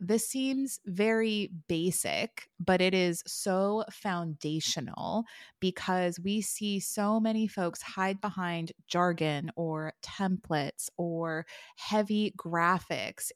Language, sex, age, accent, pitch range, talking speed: English, female, 20-39, American, 165-200 Hz, 105 wpm